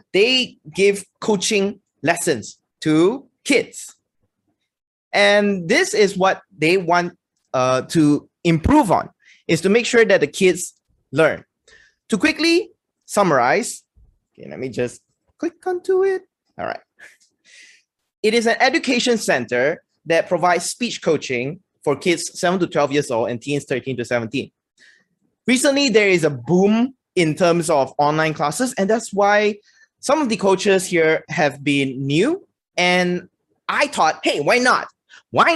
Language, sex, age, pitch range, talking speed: English, male, 20-39, 155-235 Hz, 145 wpm